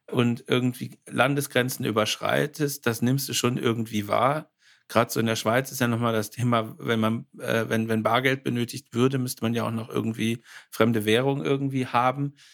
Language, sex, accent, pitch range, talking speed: German, male, German, 115-125 Hz, 180 wpm